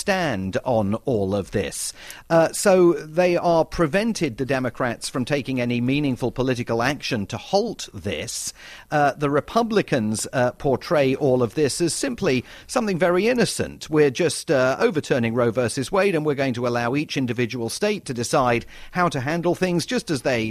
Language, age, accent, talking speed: English, 40-59, British, 170 wpm